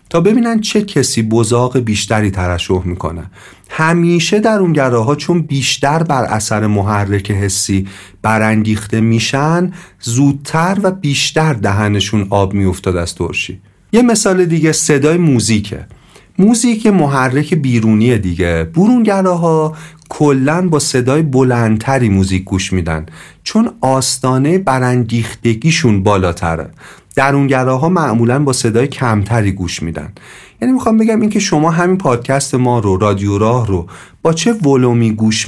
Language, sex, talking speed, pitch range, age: Persian, male, 125 wpm, 105-160 Hz, 40-59